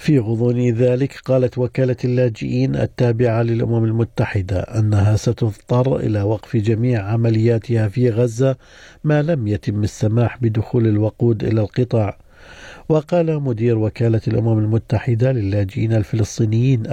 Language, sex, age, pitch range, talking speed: Arabic, male, 50-69, 110-125 Hz, 115 wpm